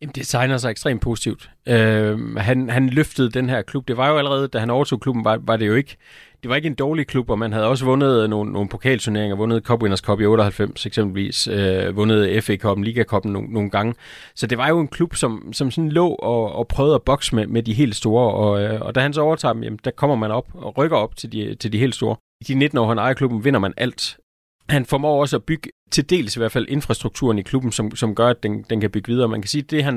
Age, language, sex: 30-49, Danish, male